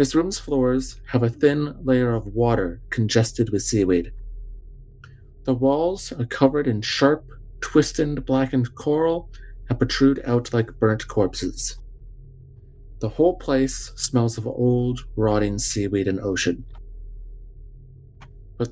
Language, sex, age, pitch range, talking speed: English, male, 30-49, 105-130 Hz, 120 wpm